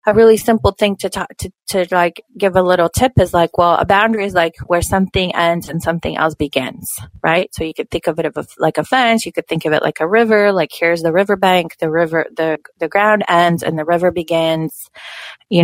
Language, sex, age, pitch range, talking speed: English, female, 20-39, 165-195 Hz, 240 wpm